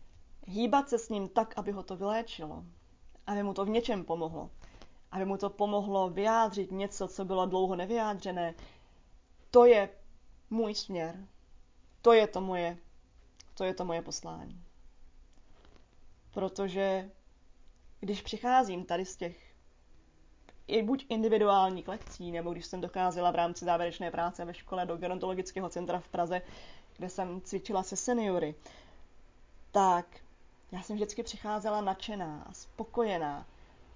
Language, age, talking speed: Czech, 20-39, 135 wpm